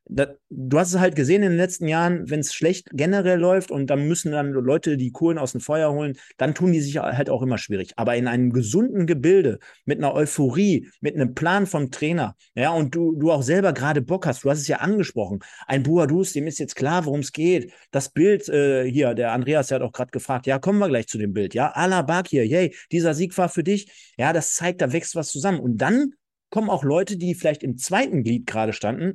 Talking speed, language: 240 wpm, German